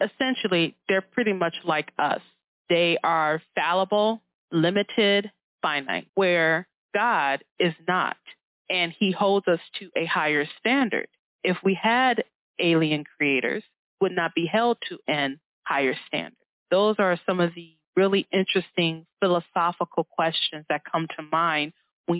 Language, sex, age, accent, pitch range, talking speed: English, female, 20-39, American, 165-195 Hz, 135 wpm